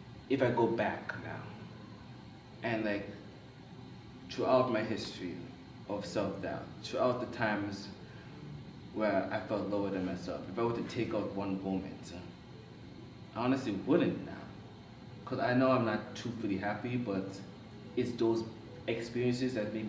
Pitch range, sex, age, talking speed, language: 100-115 Hz, male, 20-39, 145 wpm, English